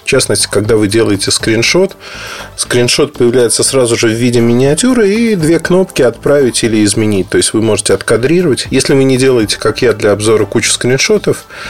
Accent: native